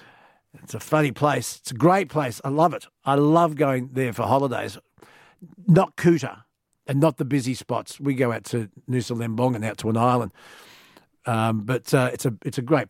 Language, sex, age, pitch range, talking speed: English, male, 50-69, 125-175 Hz, 200 wpm